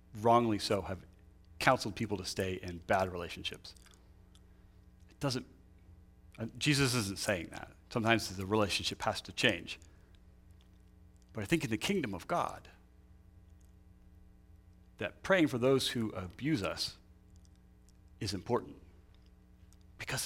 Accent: American